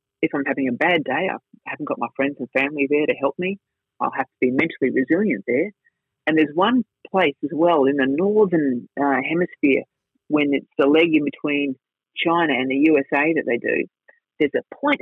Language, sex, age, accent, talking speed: English, female, 30-49, Australian, 205 wpm